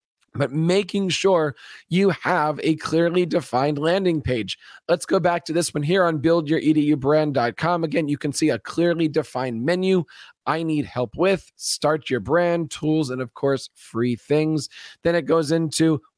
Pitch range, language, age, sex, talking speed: 135-165 Hz, English, 40-59, male, 165 wpm